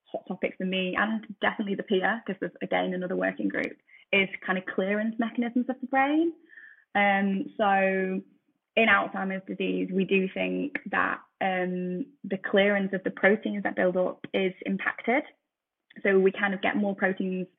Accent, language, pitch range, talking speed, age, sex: British, English, 180-205 Hz, 170 wpm, 10-29, female